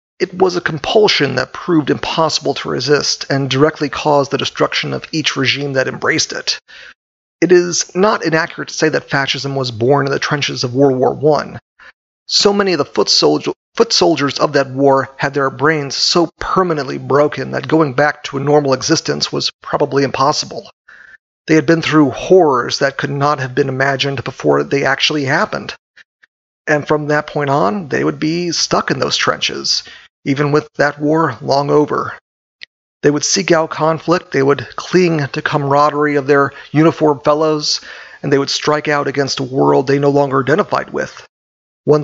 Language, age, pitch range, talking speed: English, 40-59, 140-160 Hz, 175 wpm